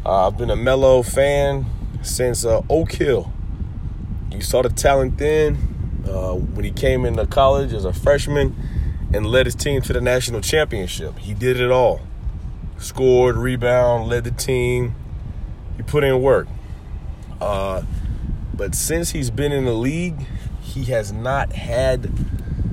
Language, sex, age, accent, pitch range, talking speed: English, male, 30-49, American, 95-125 Hz, 150 wpm